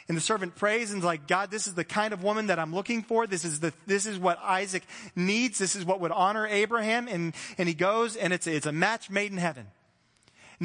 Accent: American